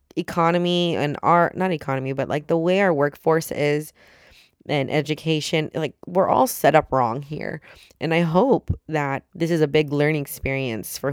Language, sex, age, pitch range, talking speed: English, female, 20-39, 140-170 Hz, 175 wpm